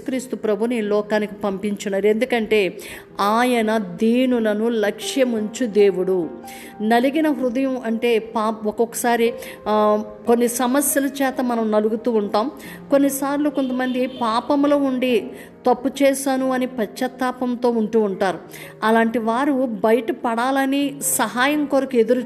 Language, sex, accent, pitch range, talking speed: Telugu, female, native, 215-255 Hz, 95 wpm